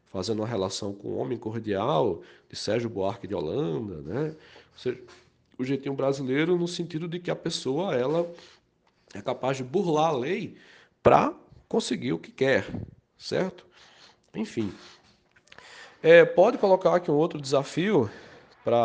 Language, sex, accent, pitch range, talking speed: Portuguese, male, Brazilian, 115-170 Hz, 145 wpm